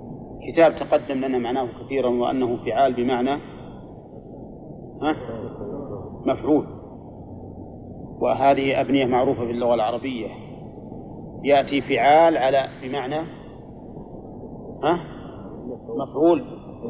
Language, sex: Arabic, male